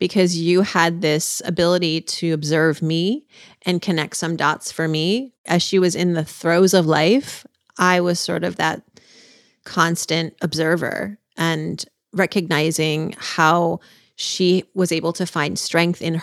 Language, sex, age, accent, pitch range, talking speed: English, female, 30-49, American, 165-190 Hz, 145 wpm